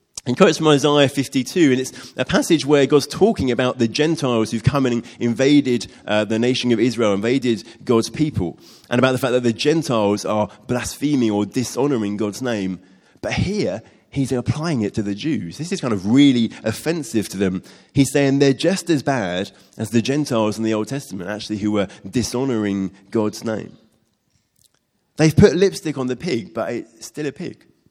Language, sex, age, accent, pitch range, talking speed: English, male, 30-49, British, 110-140 Hz, 185 wpm